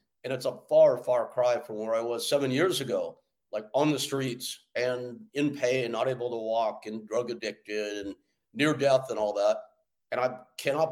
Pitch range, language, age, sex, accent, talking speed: 110-145 Hz, English, 50-69, male, American, 200 wpm